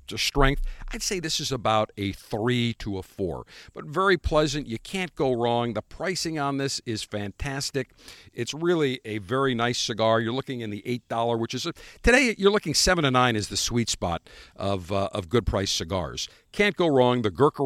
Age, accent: 50-69, American